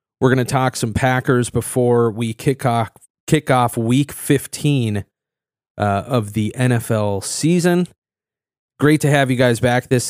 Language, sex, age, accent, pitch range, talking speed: English, male, 30-49, American, 110-130 Hz, 155 wpm